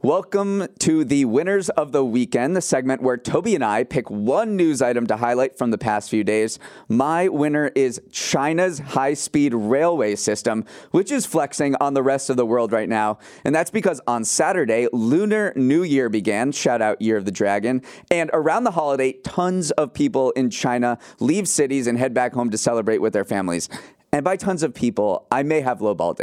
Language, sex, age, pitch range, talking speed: English, male, 30-49, 115-150 Hz, 195 wpm